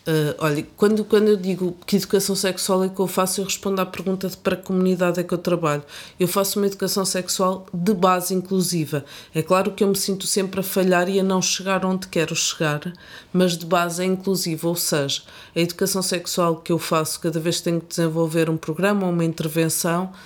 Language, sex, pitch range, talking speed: Portuguese, female, 165-185 Hz, 215 wpm